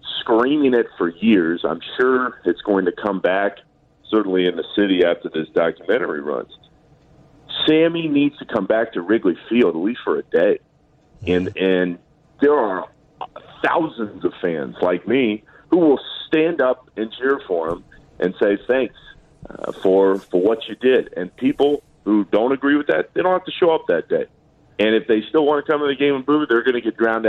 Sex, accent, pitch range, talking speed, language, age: male, American, 105-160 Hz, 200 wpm, English, 40-59